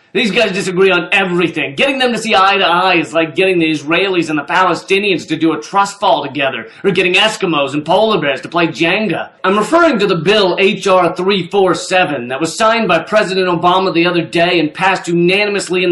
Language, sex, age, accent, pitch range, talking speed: English, male, 40-59, American, 175-220 Hz, 205 wpm